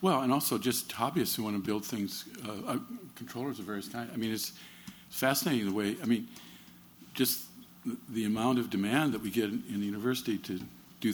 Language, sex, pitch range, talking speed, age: English, male, 85-115 Hz, 205 wpm, 50-69